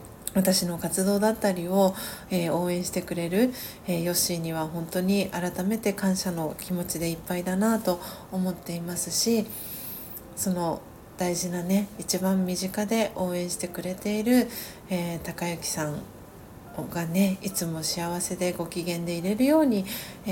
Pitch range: 175-200 Hz